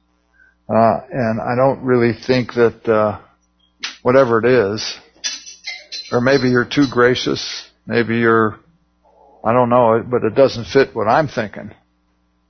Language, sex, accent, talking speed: English, male, American, 135 wpm